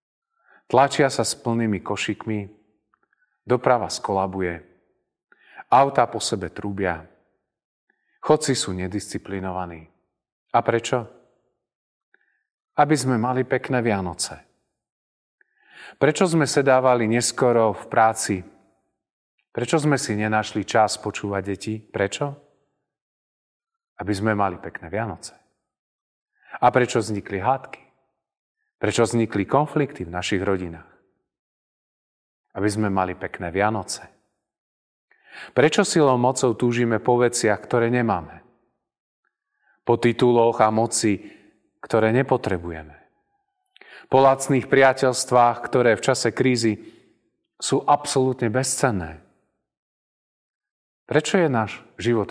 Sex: male